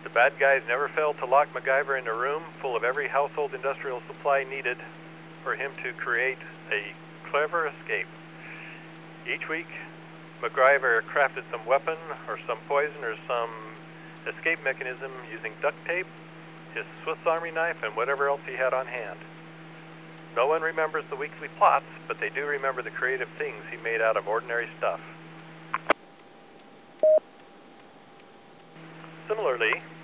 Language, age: English, 50-69